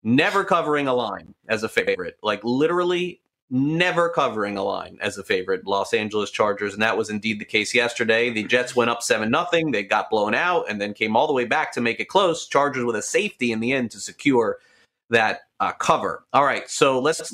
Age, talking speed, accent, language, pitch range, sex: 30-49, 220 wpm, American, English, 115-160 Hz, male